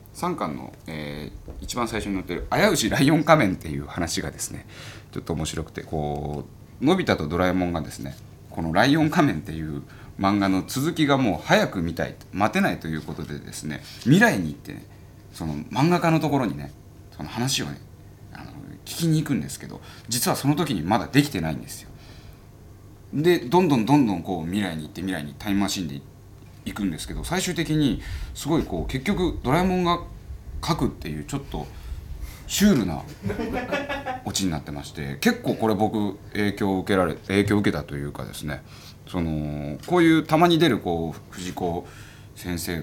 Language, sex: Japanese, male